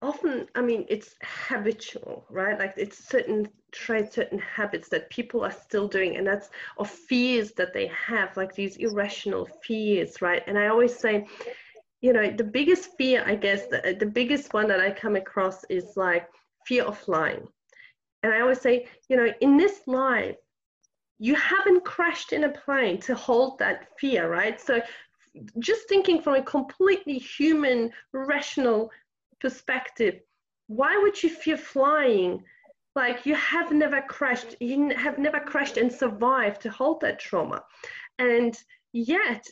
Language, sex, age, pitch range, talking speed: English, female, 30-49, 215-295 Hz, 160 wpm